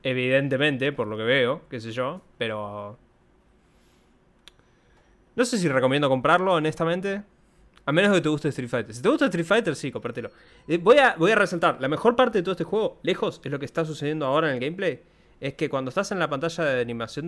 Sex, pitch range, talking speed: male, 120-160 Hz, 210 wpm